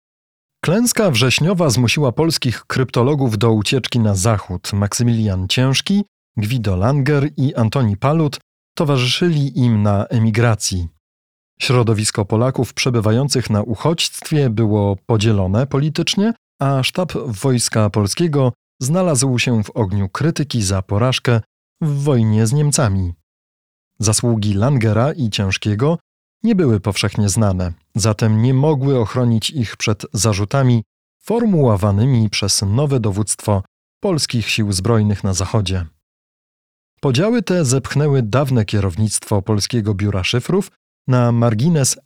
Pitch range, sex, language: 105-140 Hz, male, Polish